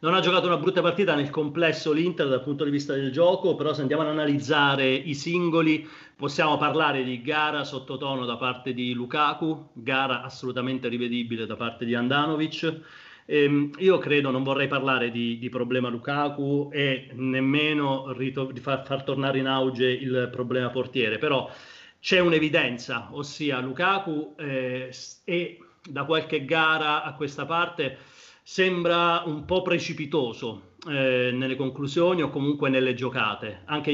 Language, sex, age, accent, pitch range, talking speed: Italian, male, 40-59, native, 130-155 Hz, 150 wpm